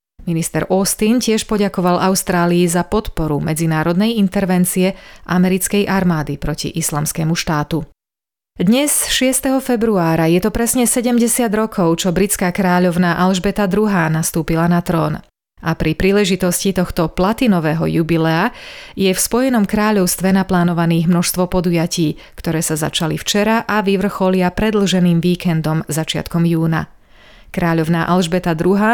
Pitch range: 165-200 Hz